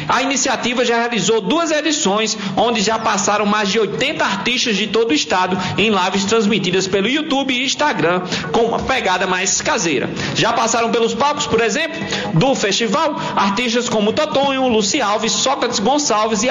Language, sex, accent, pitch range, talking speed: Portuguese, male, Brazilian, 200-245 Hz, 165 wpm